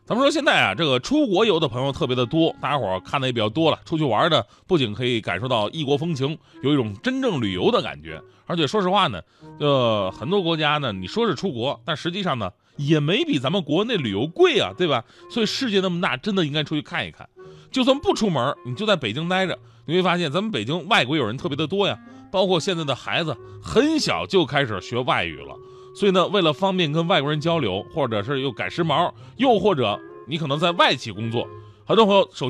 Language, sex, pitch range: Chinese, male, 125-185 Hz